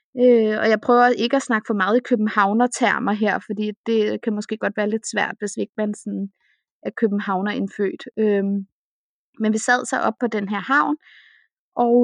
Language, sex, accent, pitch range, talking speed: Danish, female, native, 205-245 Hz, 195 wpm